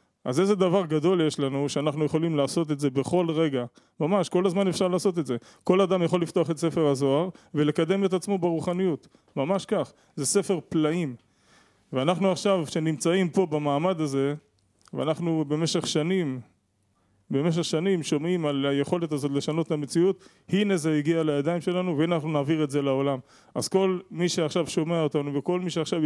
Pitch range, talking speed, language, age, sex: 145-185 Hz, 170 wpm, Hebrew, 20-39, male